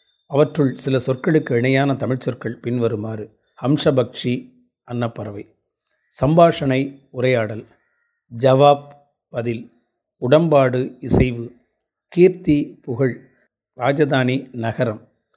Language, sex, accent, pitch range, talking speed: Tamil, male, native, 115-140 Hz, 75 wpm